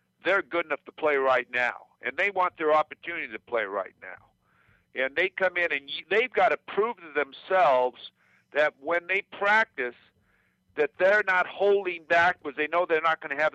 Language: English